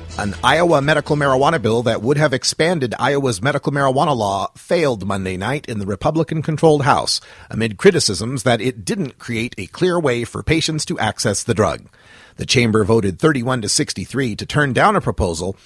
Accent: American